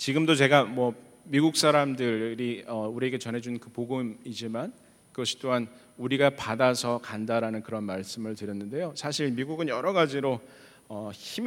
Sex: male